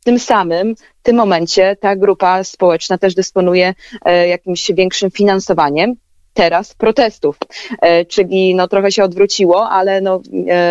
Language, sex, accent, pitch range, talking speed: Polish, female, native, 175-200 Hz, 125 wpm